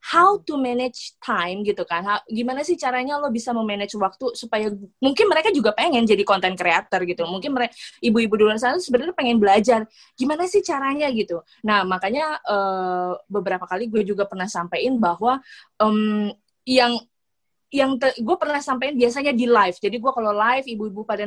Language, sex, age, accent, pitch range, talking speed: Indonesian, female, 20-39, native, 200-260 Hz, 170 wpm